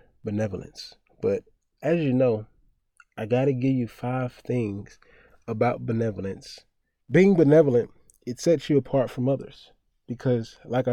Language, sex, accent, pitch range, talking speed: English, male, American, 110-140 Hz, 130 wpm